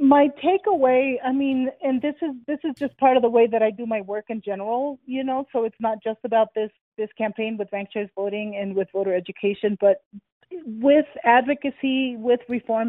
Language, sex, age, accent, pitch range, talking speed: English, female, 30-49, American, 215-255 Hz, 200 wpm